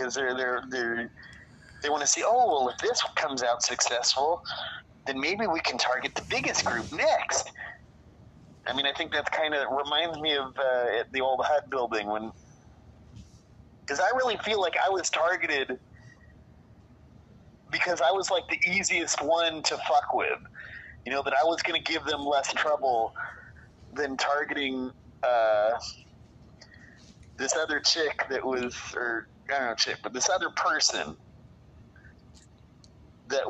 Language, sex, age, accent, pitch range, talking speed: English, male, 30-49, American, 120-150 Hz, 155 wpm